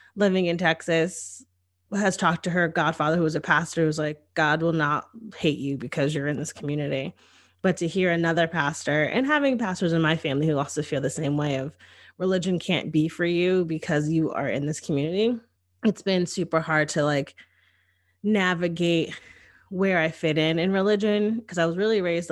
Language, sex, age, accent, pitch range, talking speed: English, female, 20-39, American, 155-180 Hz, 190 wpm